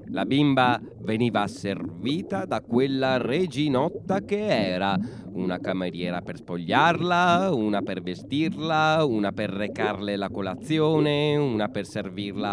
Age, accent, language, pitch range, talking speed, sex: 30-49, native, Italian, 100-160 Hz, 115 wpm, male